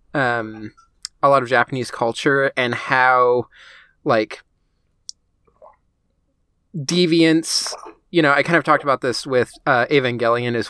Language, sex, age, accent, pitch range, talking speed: English, male, 20-39, American, 115-145 Hz, 125 wpm